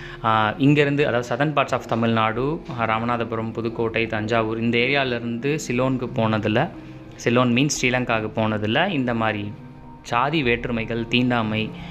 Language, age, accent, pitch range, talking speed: Tamil, 20-39, native, 110-140 Hz, 110 wpm